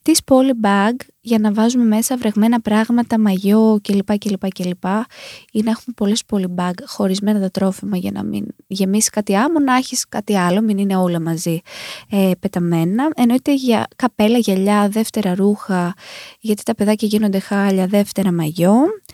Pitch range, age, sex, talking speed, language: 190-260 Hz, 20-39, female, 155 wpm, Greek